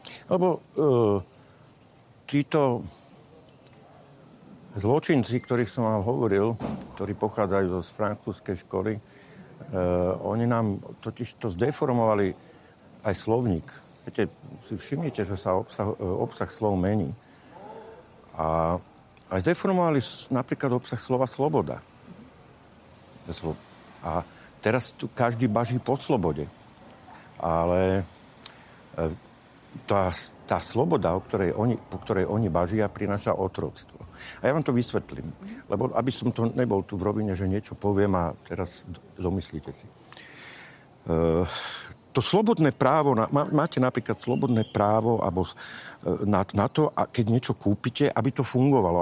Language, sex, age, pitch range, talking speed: Slovak, male, 60-79, 95-130 Hz, 115 wpm